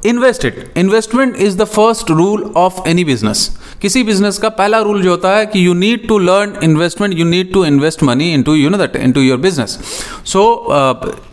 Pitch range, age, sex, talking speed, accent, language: 130-170 Hz, 30-49, male, 200 wpm, native, Hindi